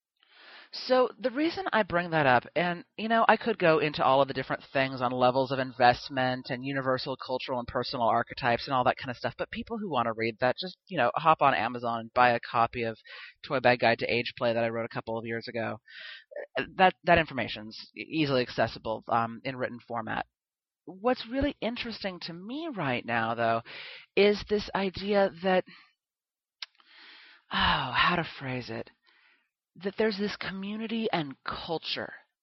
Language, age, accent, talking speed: English, 30-49, American, 185 wpm